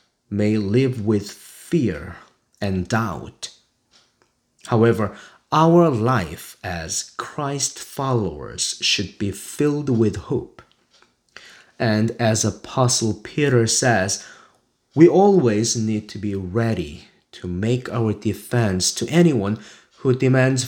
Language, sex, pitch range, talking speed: English, male, 100-125 Hz, 105 wpm